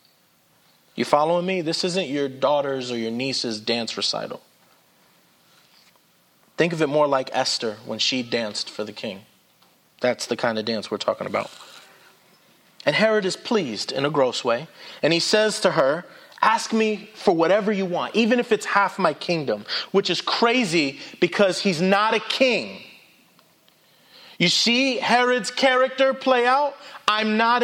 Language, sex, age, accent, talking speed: English, male, 30-49, American, 160 wpm